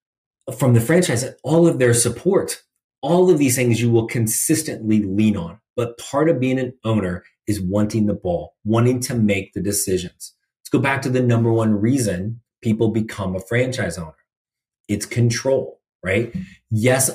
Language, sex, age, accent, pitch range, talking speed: English, male, 30-49, American, 95-120 Hz, 170 wpm